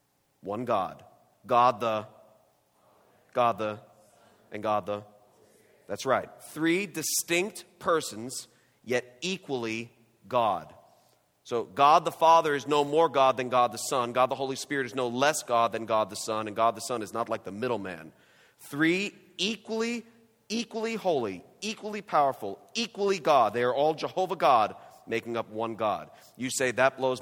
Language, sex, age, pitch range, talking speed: English, male, 40-59, 115-165 Hz, 160 wpm